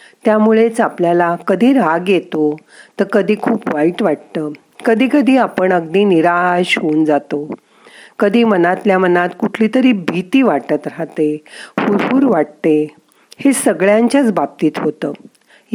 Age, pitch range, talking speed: 50-69, 170-230 Hz, 120 wpm